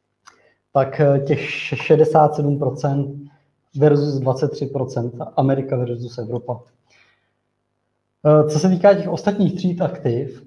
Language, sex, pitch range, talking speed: Czech, male, 140-155 Hz, 85 wpm